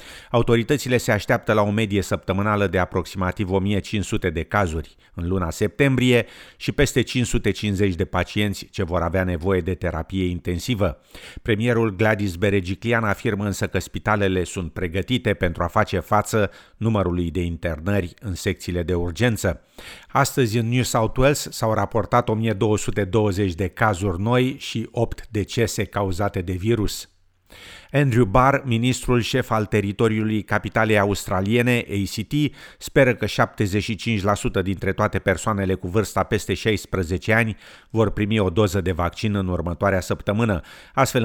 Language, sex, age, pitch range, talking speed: Romanian, male, 50-69, 95-115 Hz, 135 wpm